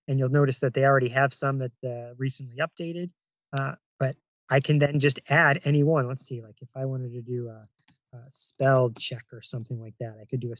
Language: English